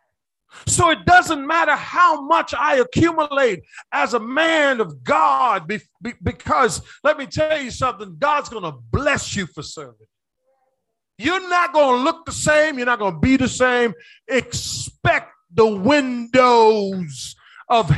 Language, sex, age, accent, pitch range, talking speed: English, male, 40-59, American, 185-290 Hz, 145 wpm